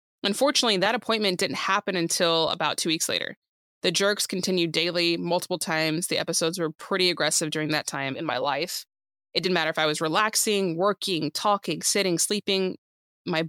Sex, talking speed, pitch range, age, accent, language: female, 175 wpm, 155-185 Hz, 20-39, American, English